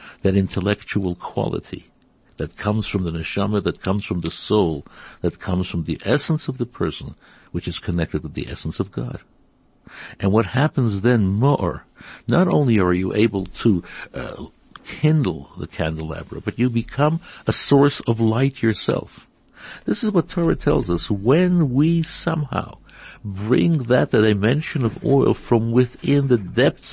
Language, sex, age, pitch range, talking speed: English, male, 60-79, 95-135 Hz, 155 wpm